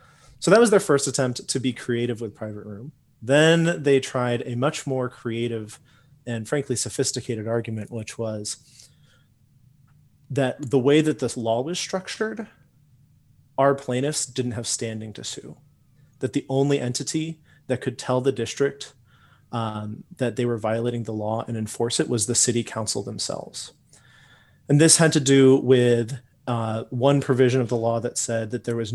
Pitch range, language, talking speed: 115-140 Hz, English, 170 wpm